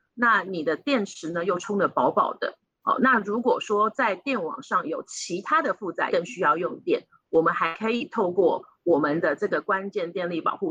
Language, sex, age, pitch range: Chinese, female, 30-49, 180-270 Hz